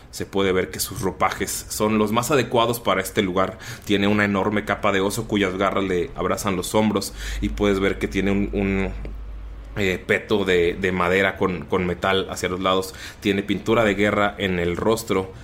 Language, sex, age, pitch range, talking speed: Spanish, male, 20-39, 90-105 Hz, 195 wpm